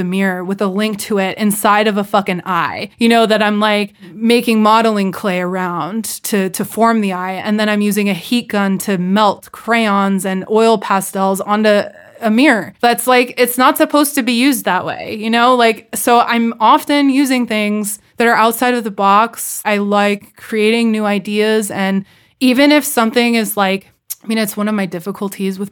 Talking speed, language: 195 wpm, English